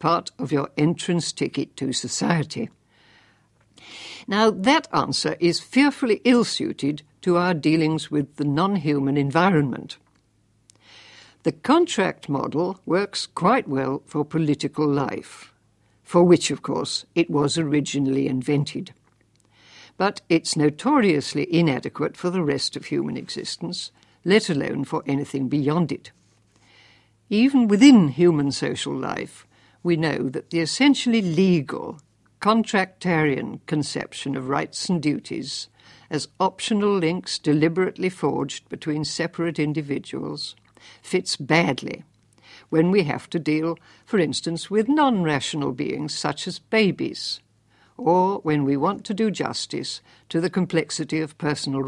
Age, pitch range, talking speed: 60-79, 140-185 Hz, 125 wpm